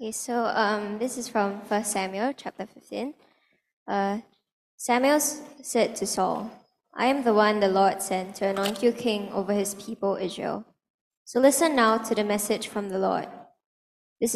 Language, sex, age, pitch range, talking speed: English, male, 10-29, 195-225 Hz, 165 wpm